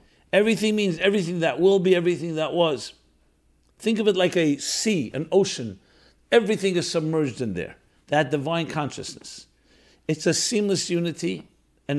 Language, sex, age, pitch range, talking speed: English, male, 60-79, 125-180 Hz, 150 wpm